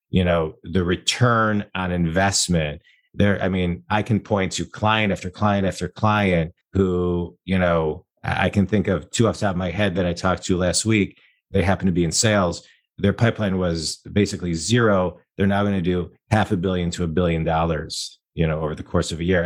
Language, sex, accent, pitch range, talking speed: English, male, American, 90-100 Hz, 215 wpm